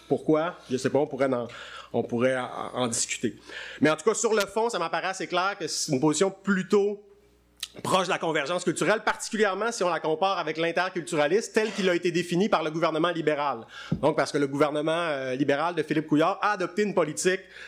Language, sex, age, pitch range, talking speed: French, male, 30-49, 145-185 Hz, 215 wpm